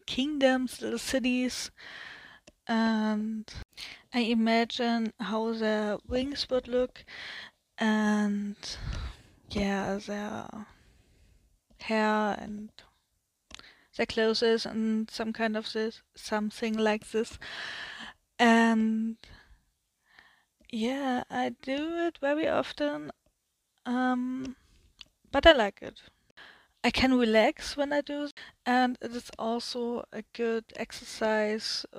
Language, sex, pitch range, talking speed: German, female, 220-255 Hz, 95 wpm